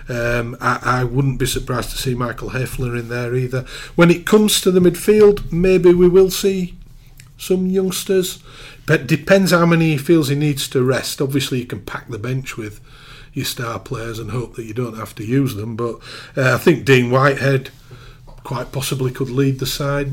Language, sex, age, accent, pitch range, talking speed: English, male, 40-59, British, 125-145 Hz, 200 wpm